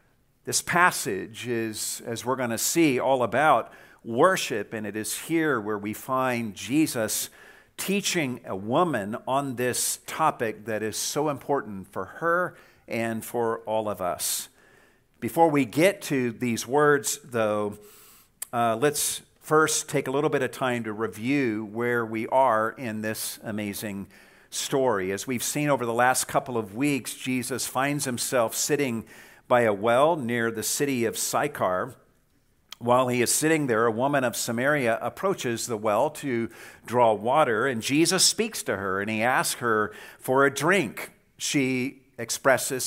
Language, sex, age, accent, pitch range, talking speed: English, male, 50-69, American, 115-150 Hz, 155 wpm